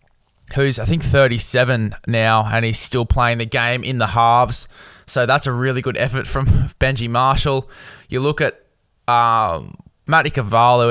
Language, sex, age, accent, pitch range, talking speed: English, male, 10-29, Australian, 115-135 Hz, 160 wpm